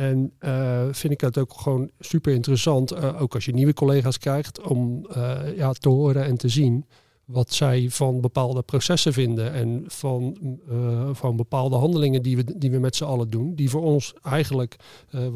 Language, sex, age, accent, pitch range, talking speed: Dutch, male, 40-59, Dutch, 120-140 Hz, 185 wpm